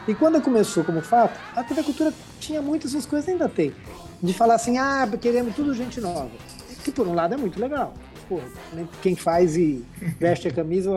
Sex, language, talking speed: male, Portuguese, 195 wpm